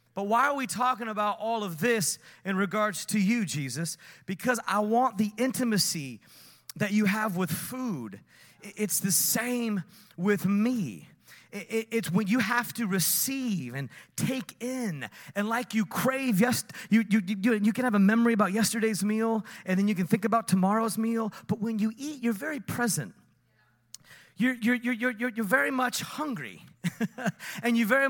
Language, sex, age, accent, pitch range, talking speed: English, male, 30-49, American, 185-235 Hz, 160 wpm